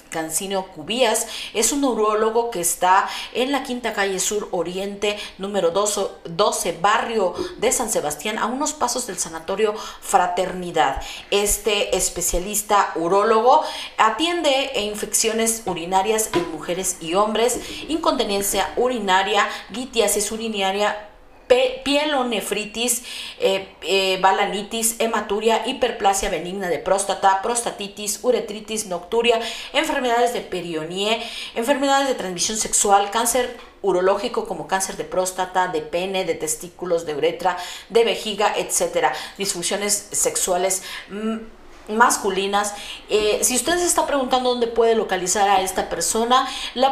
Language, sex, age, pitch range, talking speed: Spanish, female, 40-59, 190-250 Hz, 115 wpm